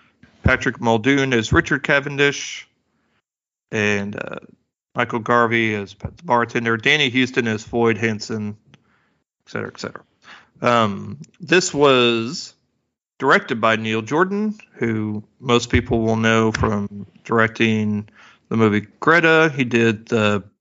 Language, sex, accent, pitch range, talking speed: English, male, American, 110-130 Hz, 120 wpm